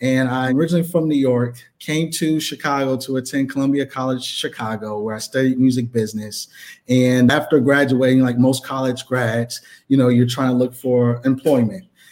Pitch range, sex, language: 120-140 Hz, male, English